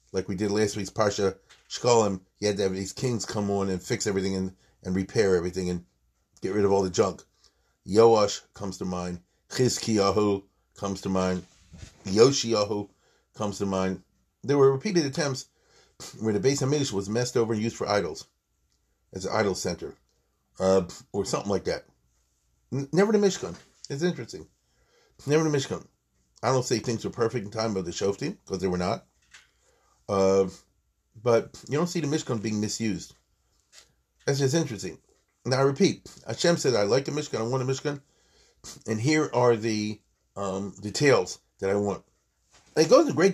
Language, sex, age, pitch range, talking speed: English, male, 40-59, 95-135 Hz, 175 wpm